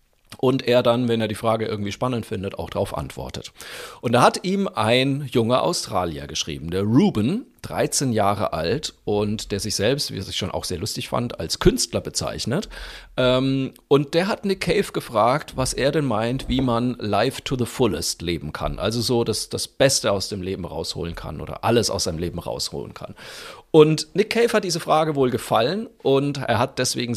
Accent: German